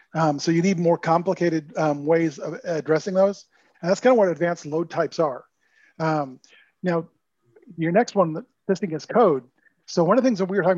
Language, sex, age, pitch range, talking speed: English, male, 40-59, 165-195 Hz, 205 wpm